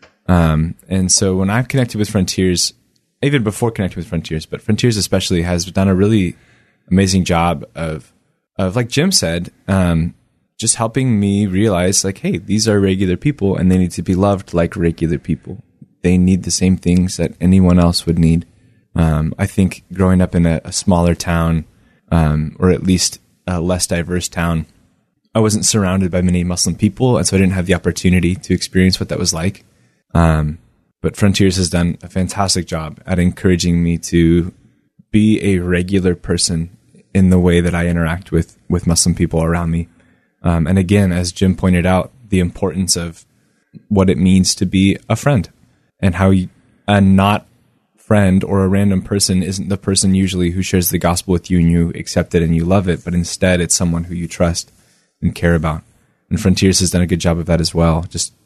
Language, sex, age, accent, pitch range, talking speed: English, male, 20-39, American, 85-95 Hz, 195 wpm